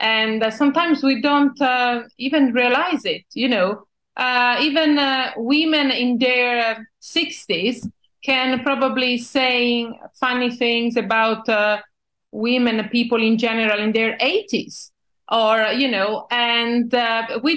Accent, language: Italian, English